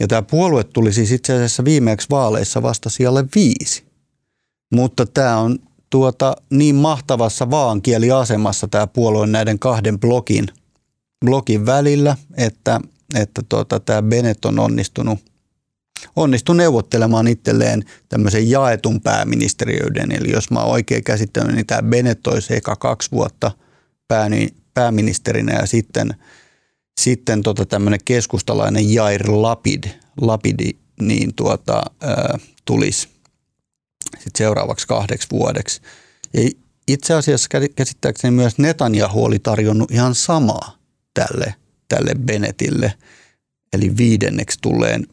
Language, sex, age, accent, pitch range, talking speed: Finnish, male, 30-49, native, 110-135 Hz, 110 wpm